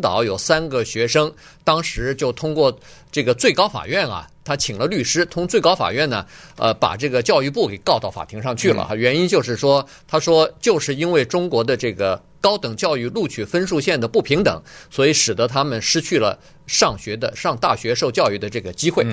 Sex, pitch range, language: male, 120-165 Hz, Chinese